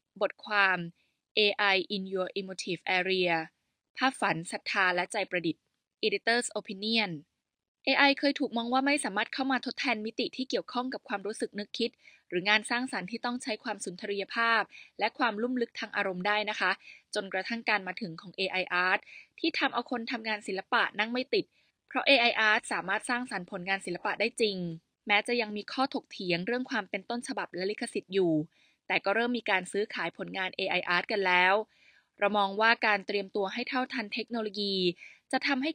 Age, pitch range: 20-39, 190-240 Hz